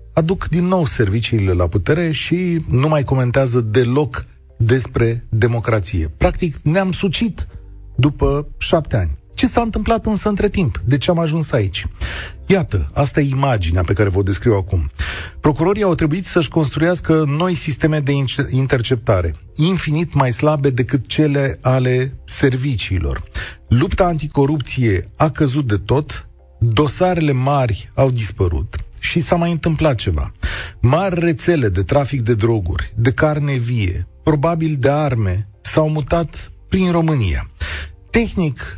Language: Romanian